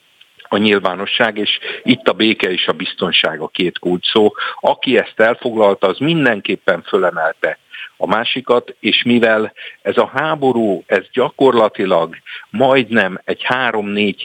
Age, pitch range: 50-69, 105-140 Hz